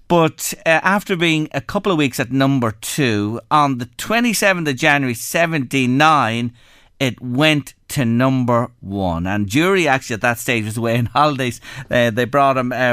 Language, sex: English, male